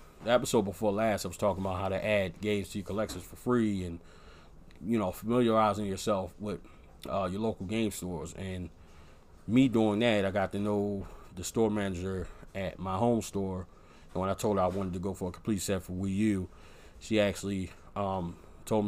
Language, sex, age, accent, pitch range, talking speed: English, male, 30-49, American, 90-105 Hz, 200 wpm